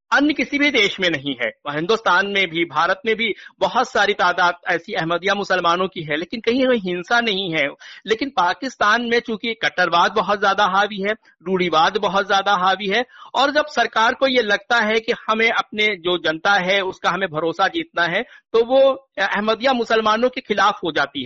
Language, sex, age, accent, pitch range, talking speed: Hindi, male, 50-69, native, 175-225 Hz, 190 wpm